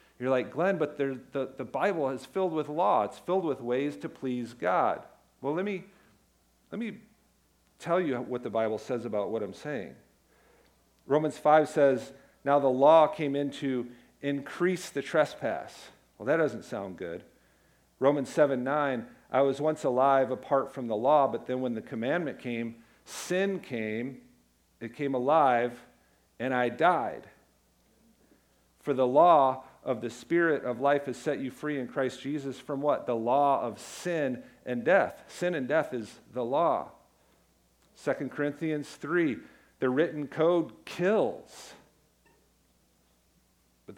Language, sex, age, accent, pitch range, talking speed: English, male, 50-69, American, 120-145 Hz, 150 wpm